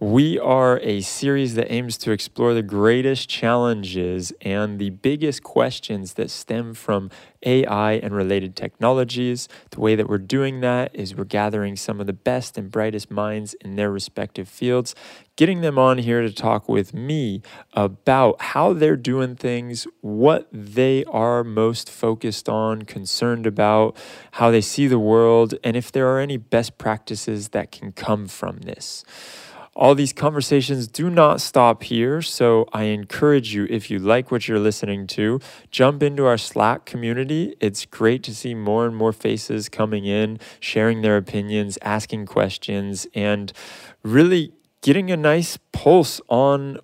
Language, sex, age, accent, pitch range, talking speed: English, male, 20-39, American, 105-125 Hz, 160 wpm